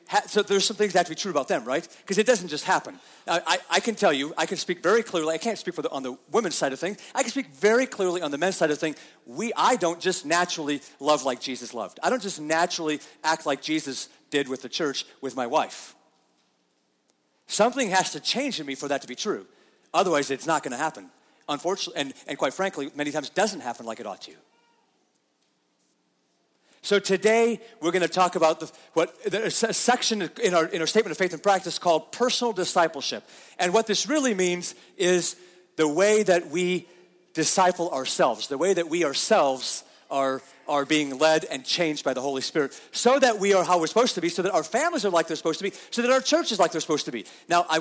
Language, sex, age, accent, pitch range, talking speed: English, male, 40-59, American, 140-190 Hz, 235 wpm